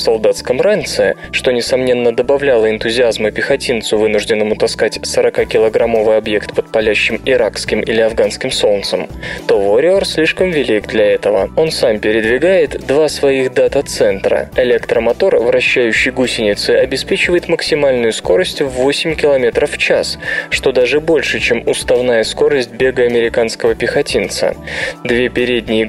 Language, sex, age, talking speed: Russian, male, 20-39, 120 wpm